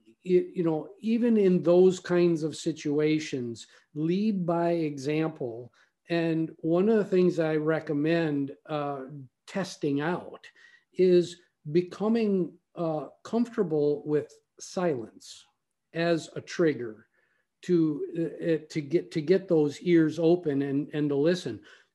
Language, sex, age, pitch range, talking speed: English, male, 50-69, 155-205 Hz, 120 wpm